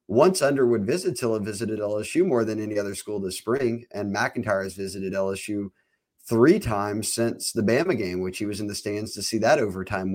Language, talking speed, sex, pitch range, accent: English, 200 wpm, male, 105-120 Hz, American